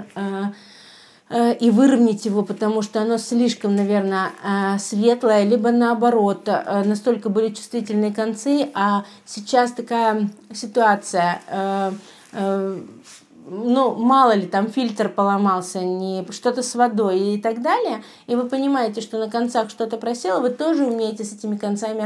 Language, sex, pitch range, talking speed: Russian, female, 210-245 Hz, 120 wpm